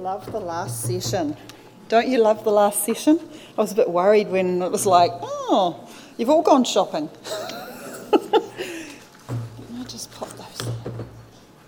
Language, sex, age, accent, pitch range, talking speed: English, female, 40-59, Australian, 175-235 Hz, 145 wpm